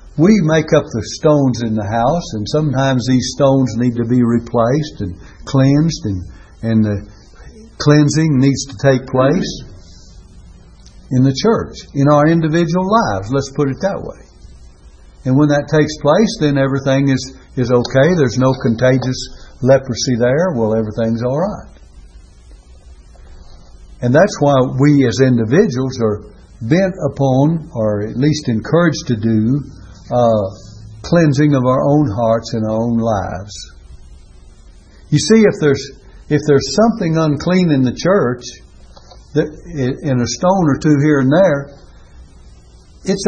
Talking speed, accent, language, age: 145 wpm, American, English, 60-79